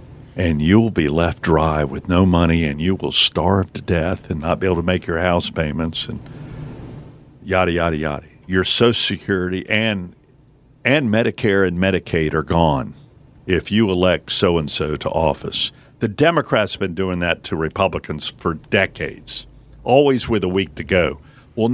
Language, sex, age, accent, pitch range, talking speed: English, male, 50-69, American, 90-120 Hz, 165 wpm